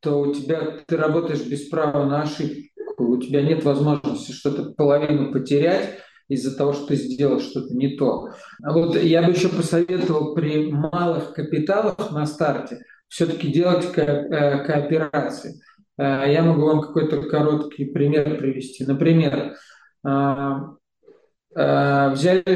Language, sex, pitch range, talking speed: Russian, male, 140-165 Hz, 125 wpm